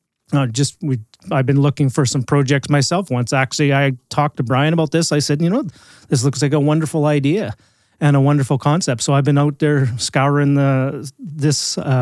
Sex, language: male, English